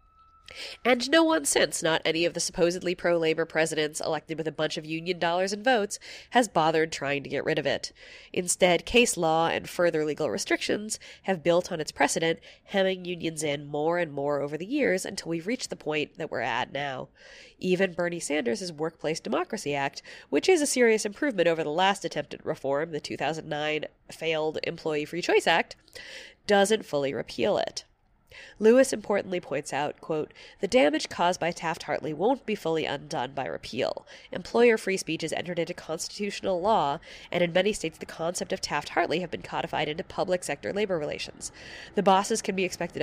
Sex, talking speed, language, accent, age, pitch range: female, 185 wpm, English, American, 20-39, 155-195 Hz